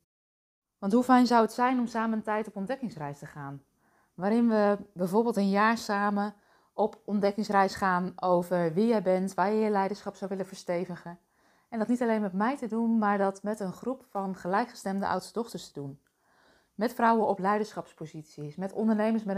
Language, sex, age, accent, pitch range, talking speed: Dutch, female, 20-39, Dutch, 175-215 Hz, 185 wpm